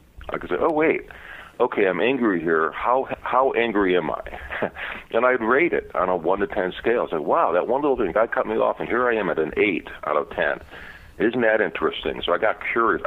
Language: English